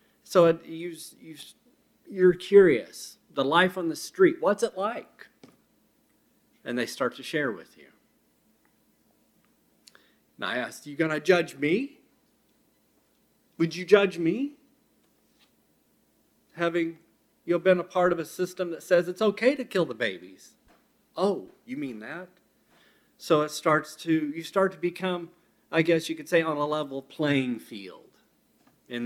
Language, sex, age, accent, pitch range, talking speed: English, male, 40-59, American, 145-195 Hz, 145 wpm